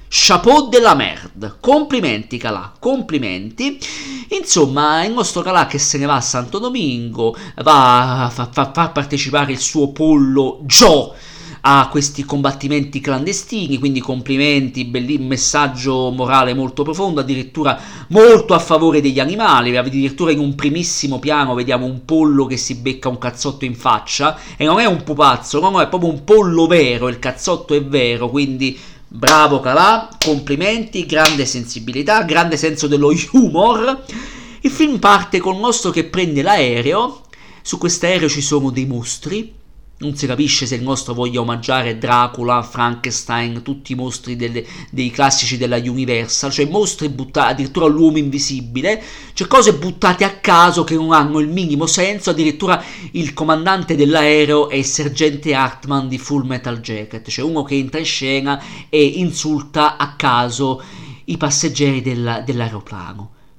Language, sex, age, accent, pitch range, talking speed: Italian, male, 40-59, native, 130-165 Hz, 150 wpm